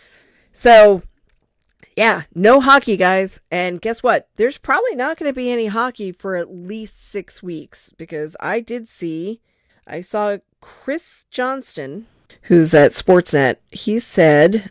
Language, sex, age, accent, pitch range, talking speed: English, female, 40-59, American, 170-225 Hz, 140 wpm